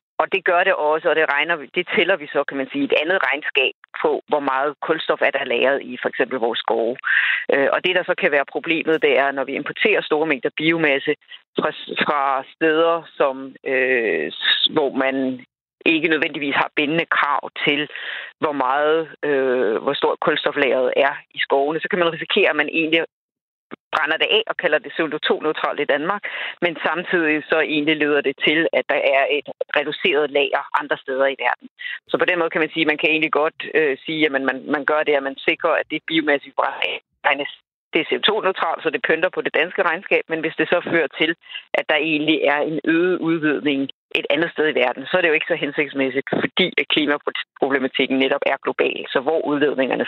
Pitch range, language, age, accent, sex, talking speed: 140-165 Hz, Danish, 40-59, native, female, 200 wpm